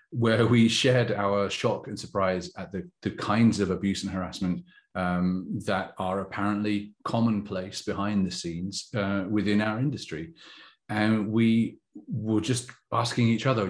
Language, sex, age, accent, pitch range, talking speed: English, male, 30-49, British, 95-115 Hz, 150 wpm